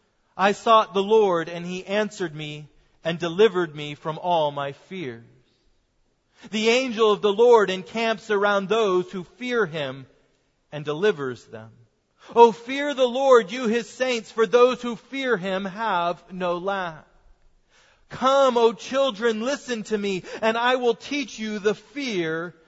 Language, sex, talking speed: English, male, 155 wpm